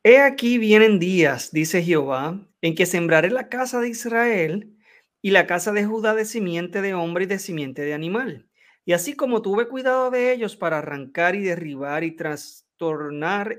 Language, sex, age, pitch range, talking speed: Spanish, male, 30-49, 160-225 Hz, 175 wpm